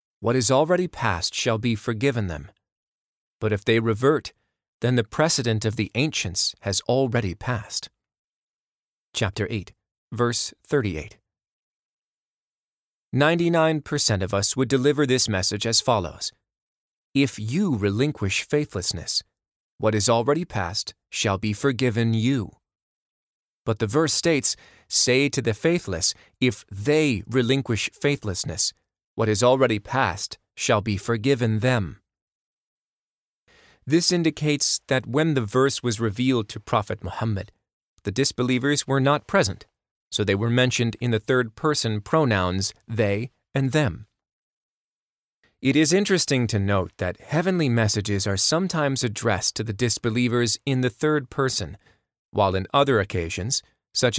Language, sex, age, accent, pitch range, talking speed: English, male, 30-49, American, 105-135 Hz, 130 wpm